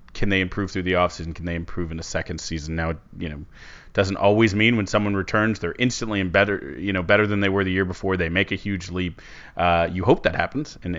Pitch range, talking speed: 85-100 Hz, 250 wpm